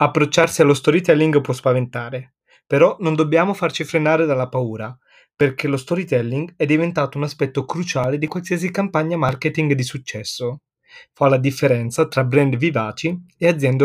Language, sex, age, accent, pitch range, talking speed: Italian, male, 20-39, native, 130-165 Hz, 145 wpm